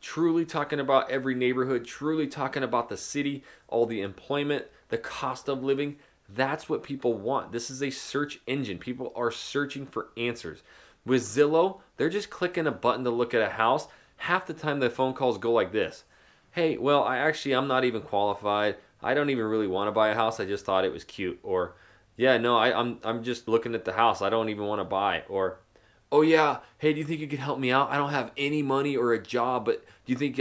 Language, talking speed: English, 225 wpm